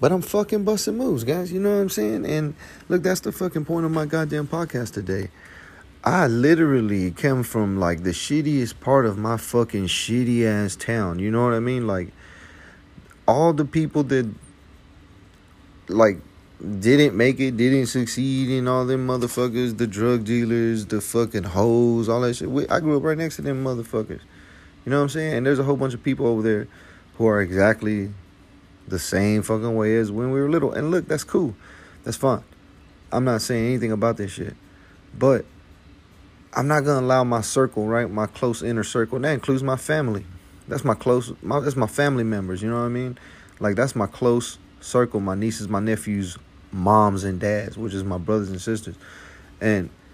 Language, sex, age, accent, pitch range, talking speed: English, male, 30-49, American, 95-135 Hz, 195 wpm